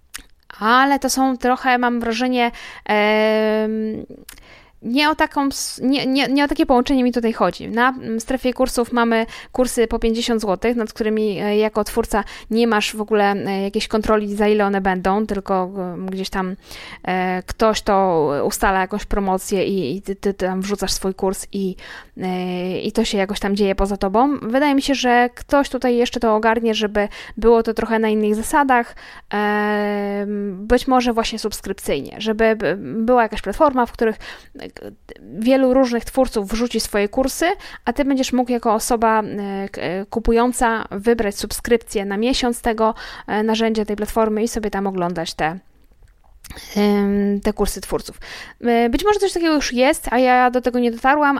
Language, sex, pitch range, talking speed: Polish, female, 200-245 Hz, 145 wpm